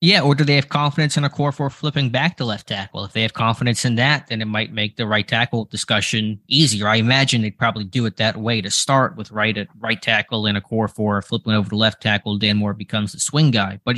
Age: 20-39